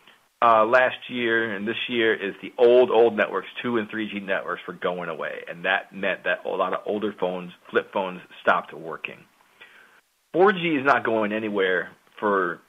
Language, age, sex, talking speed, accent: English, 40-59, male, 175 wpm, American